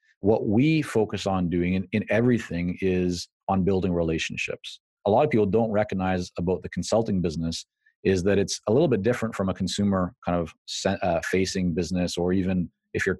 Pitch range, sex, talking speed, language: 90-105 Hz, male, 185 wpm, English